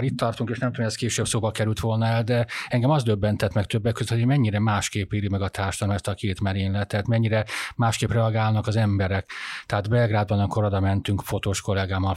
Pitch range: 100-110 Hz